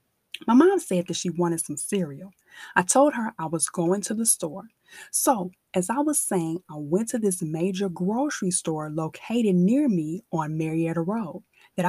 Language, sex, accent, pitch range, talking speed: English, female, American, 175-240 Hz, 180 wpm